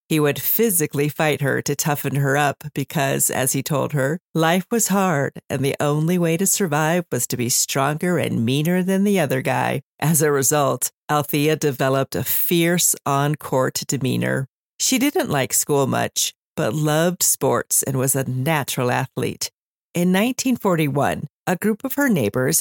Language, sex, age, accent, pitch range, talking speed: English, female, 40-59, American, 140-170 Hz, 165 wpm